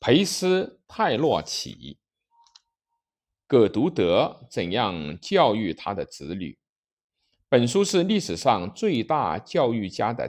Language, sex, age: Chinese, male, 50-69